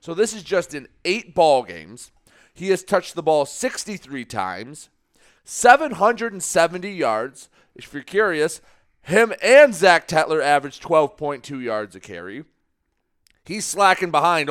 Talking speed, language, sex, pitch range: 155 wpm, English, male, 145-205 Hz